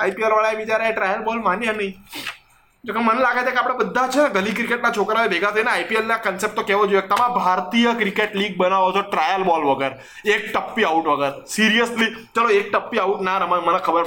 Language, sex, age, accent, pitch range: Gujarati, male, 20-39, native, 175-235 Hz